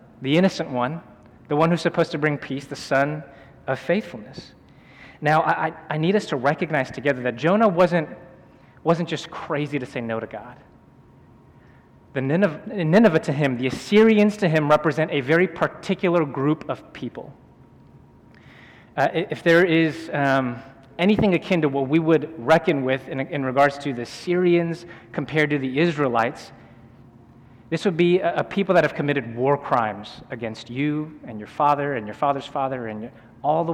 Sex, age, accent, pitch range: male, 30-49, American, 130-165 Hz